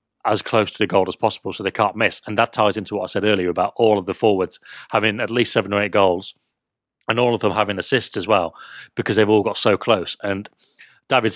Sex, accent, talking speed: male, British, 250 wpm